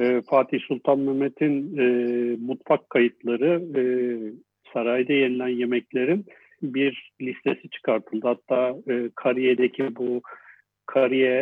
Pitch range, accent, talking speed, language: 125-165 Hz, native, 80 wpm, Turkish